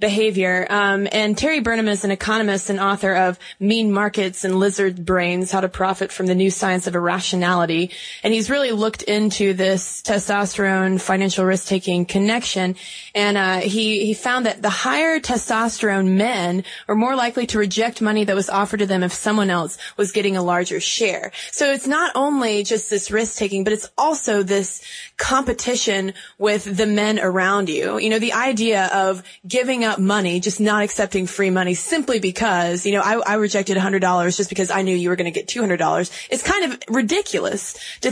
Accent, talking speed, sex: American, 185 wpm, female